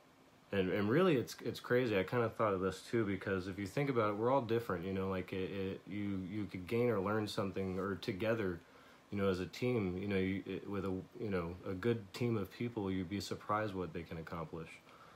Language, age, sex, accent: English, 30-49, male, American